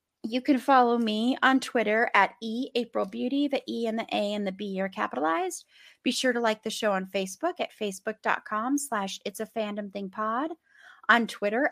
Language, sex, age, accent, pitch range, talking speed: English, female, 30-49, American, 200-255 Hz, 185 wpm